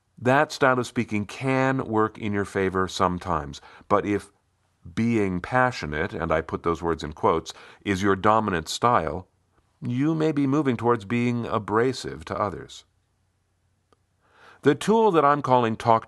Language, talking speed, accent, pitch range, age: English, 150 wpm, American, 85-120 Hz, 50-69